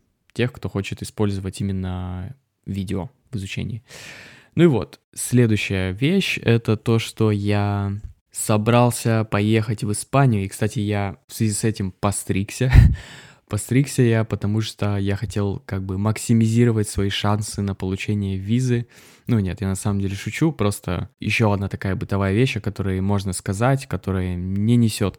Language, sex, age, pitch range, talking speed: Russian, male, 20-39, 95-115 Hz, 150 wpm